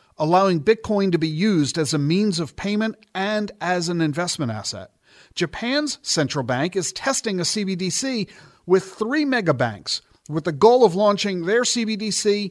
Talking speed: 155 wpm